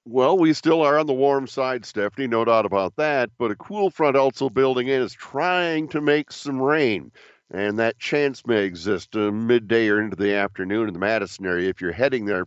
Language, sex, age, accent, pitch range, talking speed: English, male, 50-69, American, 105-130 Hz, 215 wpm